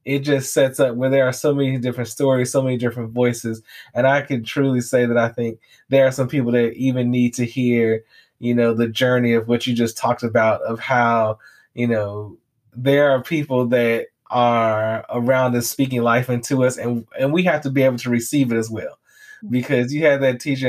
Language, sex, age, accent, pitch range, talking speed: English, male, 20-39, American, 120-135 Hz, 215 wpm